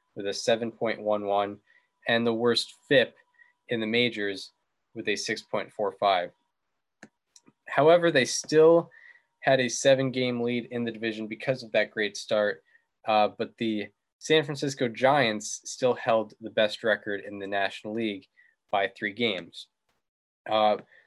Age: 20-39